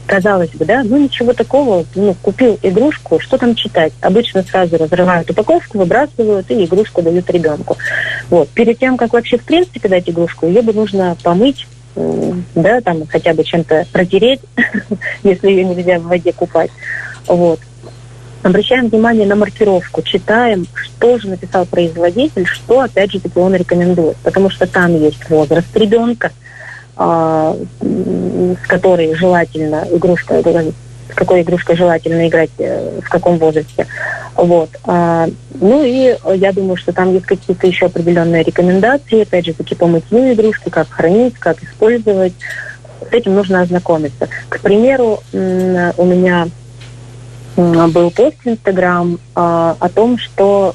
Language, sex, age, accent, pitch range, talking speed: Russian, female, 30-49, native, 165-200 Hz, 135 wpm